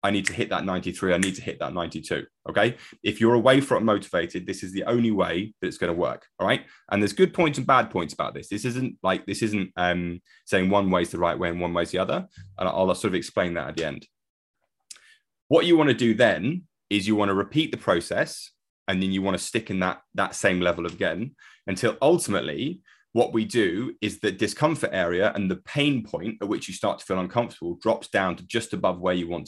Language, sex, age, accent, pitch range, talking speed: English, male, 20-39, British, 90-120 Hz, 245 wpm